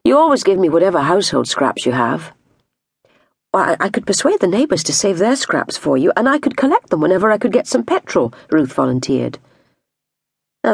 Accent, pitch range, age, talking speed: British, 140-200 Hz, 50-69, 200 wpm